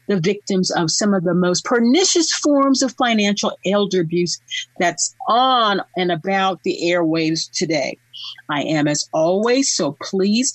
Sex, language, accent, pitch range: female, English, American, 175-260 Hz